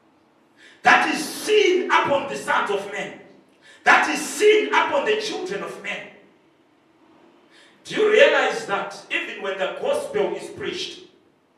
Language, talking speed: English, 135 wpm